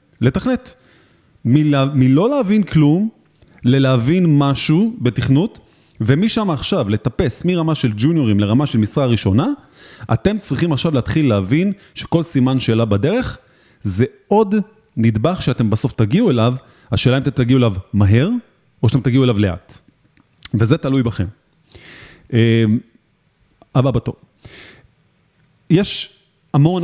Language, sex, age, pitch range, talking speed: Hebrew, male, 30-49, 115-155 Hz, 115 wpm